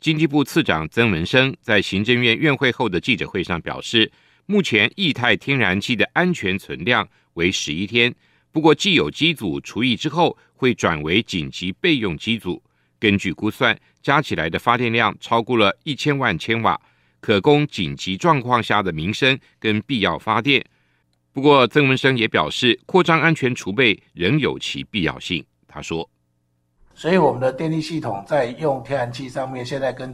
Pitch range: 110-145 Hz